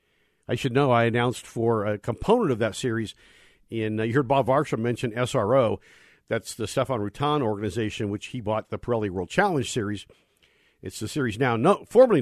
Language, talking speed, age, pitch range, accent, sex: English, 185 wpm, 50-69, 110-145 Hz, American, male